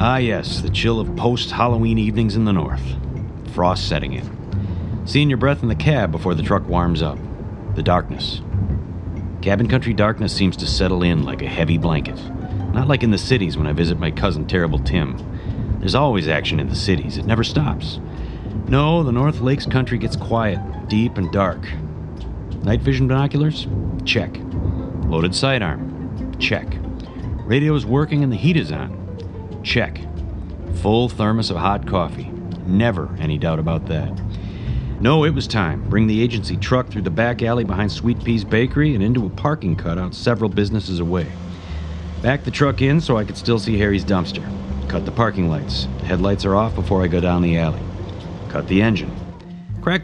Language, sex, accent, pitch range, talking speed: English, male, American, 85-115 Hz, 175 wpm